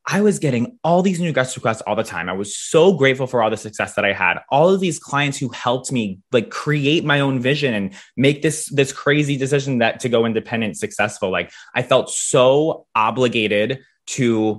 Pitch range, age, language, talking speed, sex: 110-140 Hz, 20-39, English, 210 wpm, male